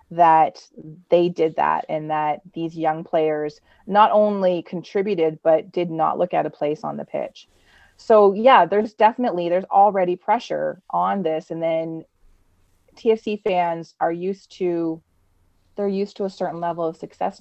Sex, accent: female, American